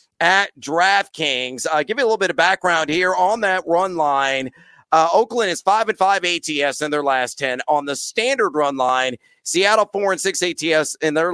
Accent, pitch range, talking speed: American, 150-195 Hz, 200 wpm